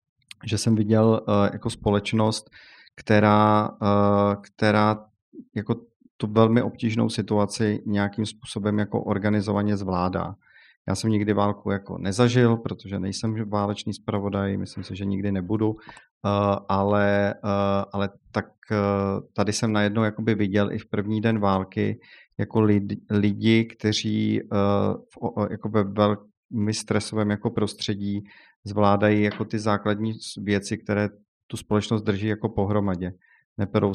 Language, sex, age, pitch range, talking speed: Czech, male, 40-59, 100-110 Hz, 115 wpm